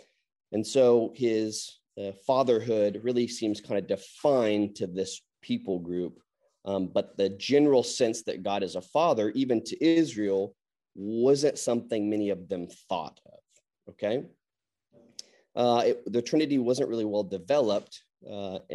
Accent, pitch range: American, 100-120 Hz